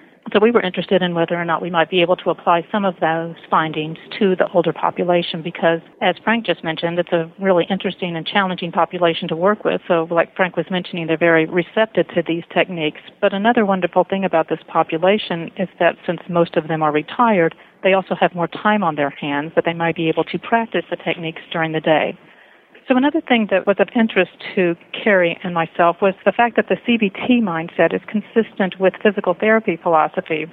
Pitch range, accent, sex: 165-200 Hz, American, female